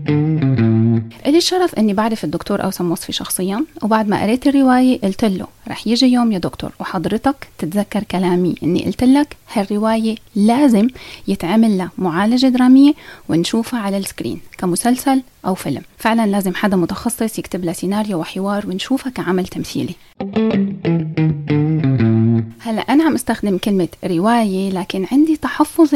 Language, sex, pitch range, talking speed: Arabic, female, 185-255 Hz, 125 wpm